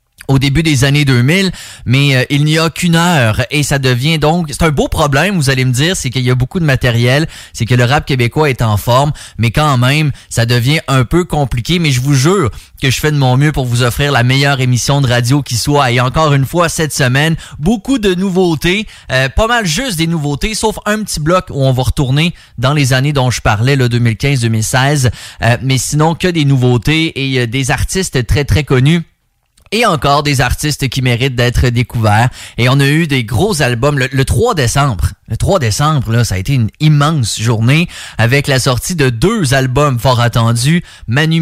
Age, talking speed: 20-39, 215 wpm